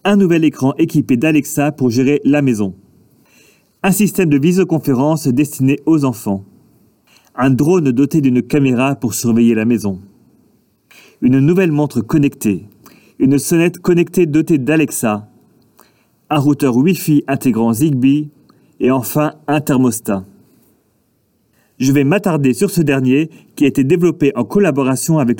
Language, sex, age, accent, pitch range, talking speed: French, male, 40-59, French, 125-155 Hz, 130 wpm